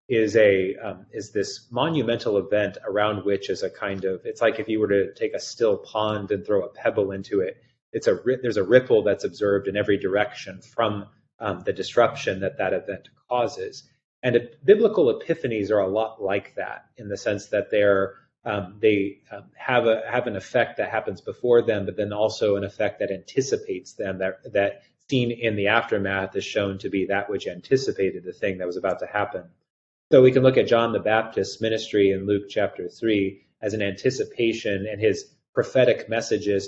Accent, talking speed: American, 195 wpm